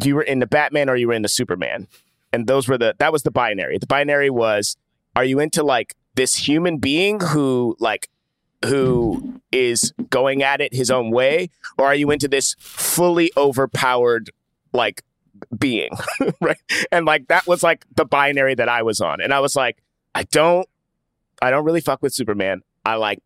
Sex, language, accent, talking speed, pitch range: male, English, American, 190 wpm, 120-160 Hz